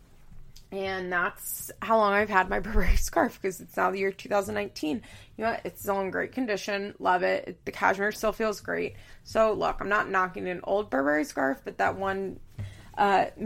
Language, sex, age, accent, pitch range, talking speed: English, female, 20-39, American, 190-235 Hz, 185 wpm